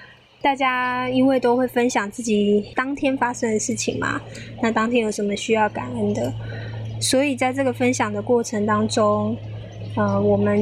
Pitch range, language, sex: 210-255 Hz, Chinese, female